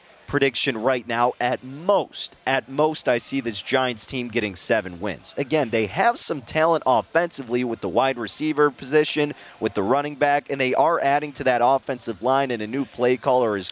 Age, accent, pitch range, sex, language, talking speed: 30-49, American, 110-145 Hz, male, English, 195 wpm